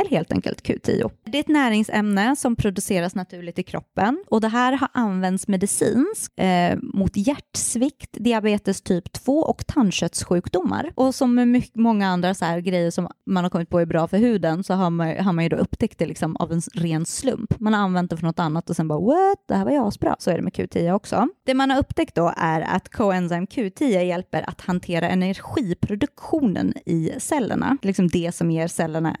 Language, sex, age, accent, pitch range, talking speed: English, female, 20-39, Swedish, 170-230 Hz, 205 wpm